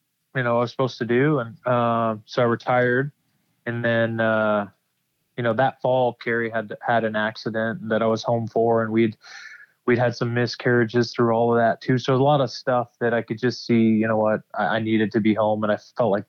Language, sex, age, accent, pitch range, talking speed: English, male, 20-39, American, 110-130 Hz, 230 wpm